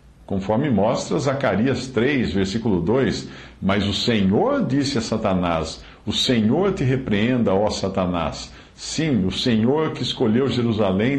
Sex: male